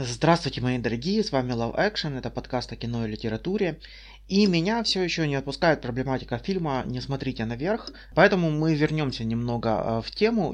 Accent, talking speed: native, 170 wpm